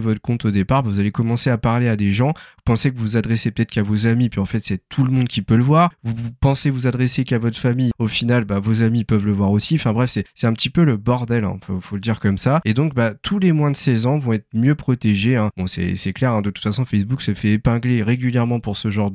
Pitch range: 110-140 Hz